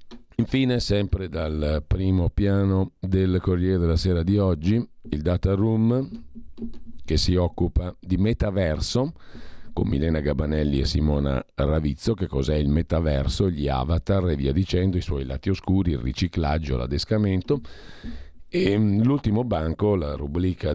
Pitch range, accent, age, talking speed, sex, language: 80-100 Hz, native, 50-69, 135 wpm, male, Italian